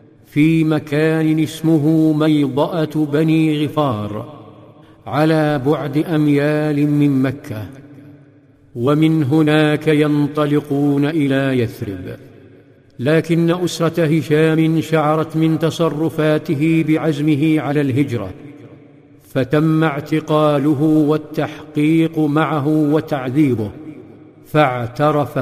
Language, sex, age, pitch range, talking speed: Arabic, male, 50-69, 145-160 Hz, 75 wpm